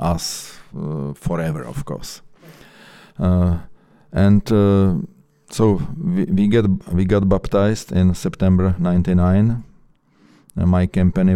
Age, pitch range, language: 50-69, 85-95 Hz, English